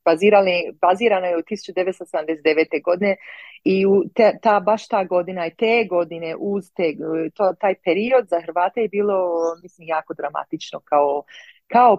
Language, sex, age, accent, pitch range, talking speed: Croatian, female, 30-49, native, 160-195 Hz, 150 wpm